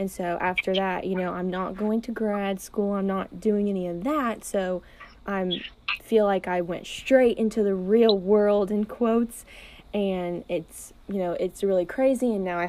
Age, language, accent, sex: 20-39, English, American, female